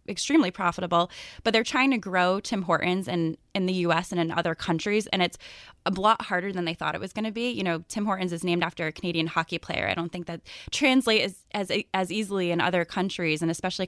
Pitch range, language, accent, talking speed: 170-205 Hz, English, American, 240 wpm